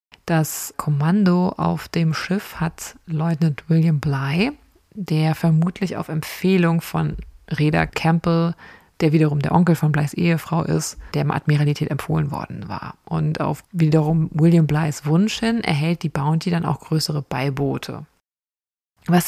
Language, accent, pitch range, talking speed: German, German, 155-175 Hz, 135 wpm